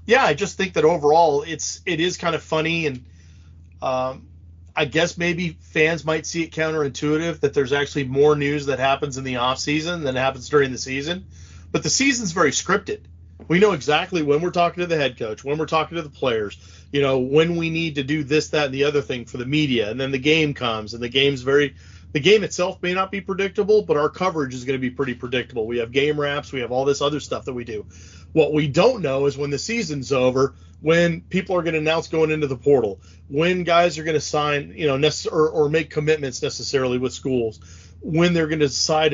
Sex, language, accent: male, English, American